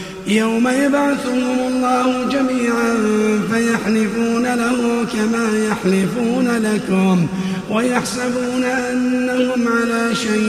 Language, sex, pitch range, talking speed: Arabic, male, 195-240 Hz, 75 wpm